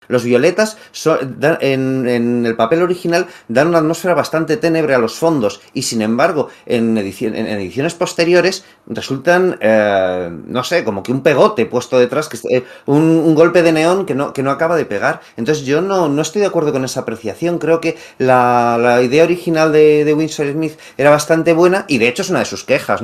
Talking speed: 210 wpm